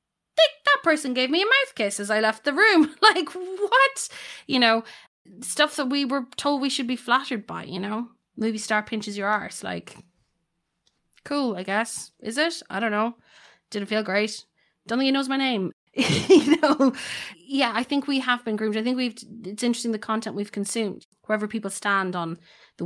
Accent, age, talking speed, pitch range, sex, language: Irish, 20-39, 195 wpm, 195-255 Hz, female, English